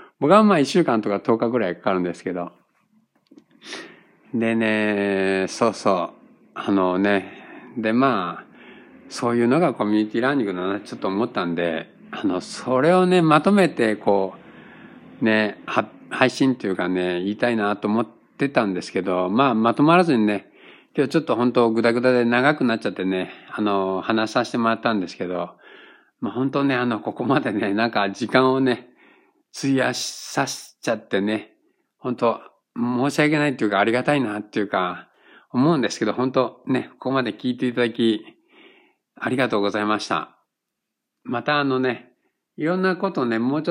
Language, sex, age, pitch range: Japanese, male, 60-79, 105-140 Hz